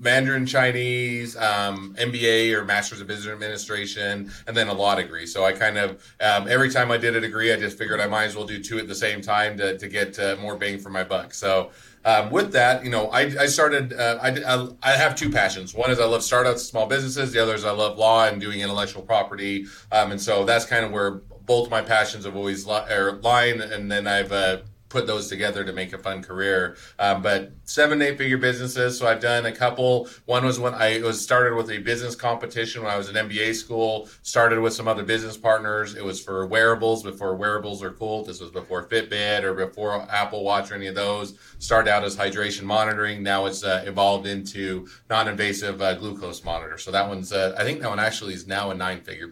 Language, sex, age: English, male, 30-49